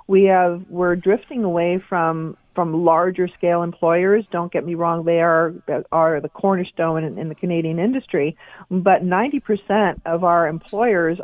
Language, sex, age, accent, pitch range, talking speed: English, female, 50-69, American, 175-215 Hz, 150 wpm